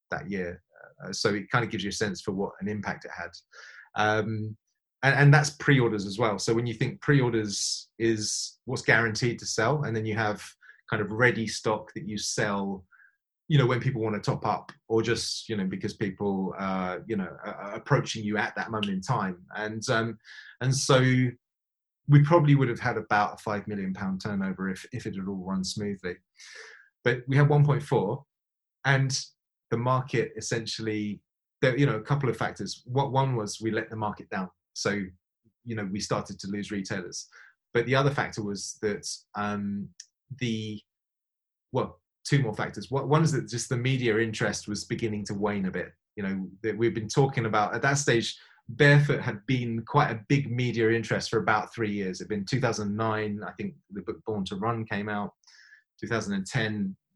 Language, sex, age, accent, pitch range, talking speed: English, male, 30-49, British, 105-130 Hz, 195 wpm